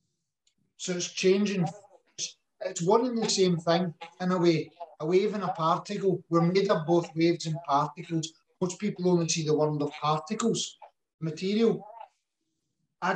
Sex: male